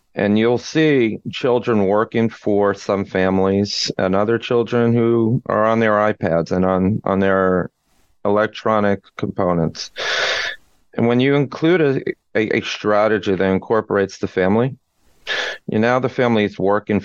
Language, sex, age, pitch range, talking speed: English, male, 40-59, 95-110 Hz, 140 wpm